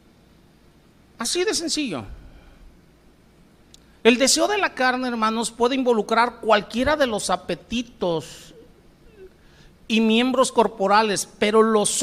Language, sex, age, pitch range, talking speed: Spanish, male, 50-69, 180-245 Hz, 100 wpm